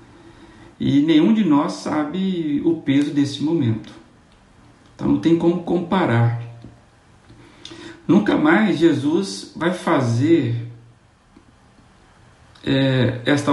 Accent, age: Brazilian, 60-79